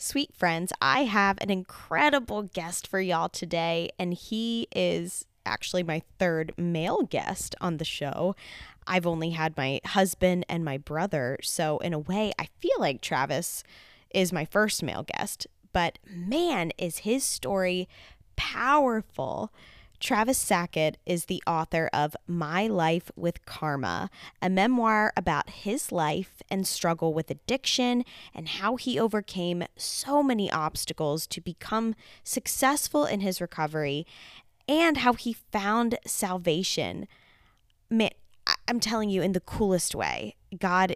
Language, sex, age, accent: English, female, 20-39, American